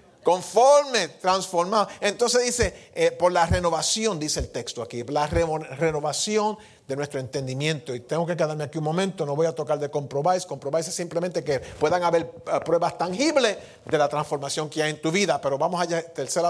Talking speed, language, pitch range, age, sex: 180 wpm, English, 155-215 Hz, 50-69, male